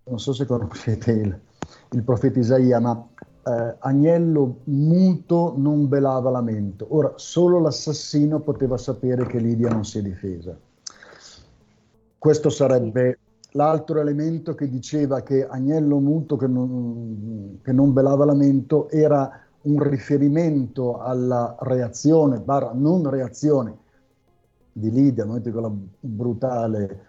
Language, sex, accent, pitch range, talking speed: Italian, male, native, 120-150 Hz, 120 wpm